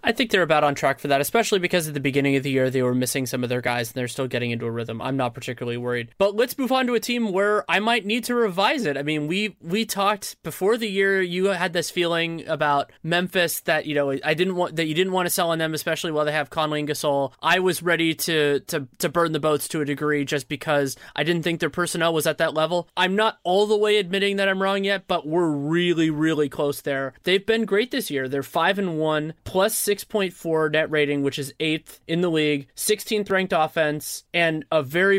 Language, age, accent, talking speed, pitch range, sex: English, 20-39, American, 250 wpm, 145-185 Hz, male